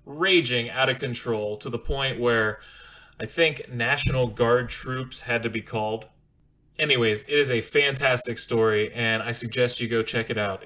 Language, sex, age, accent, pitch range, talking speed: English, male, 20-39, American, 110-125 Hz, 175 wpm